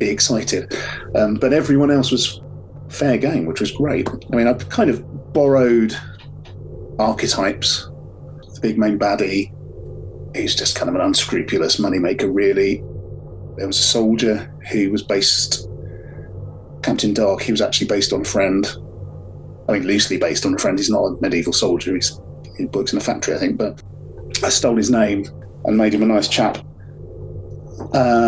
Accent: British